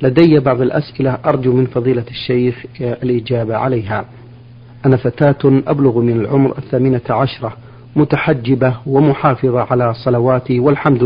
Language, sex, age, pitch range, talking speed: Arabic, male, 50-69, 120-140 Hz, 115 wpm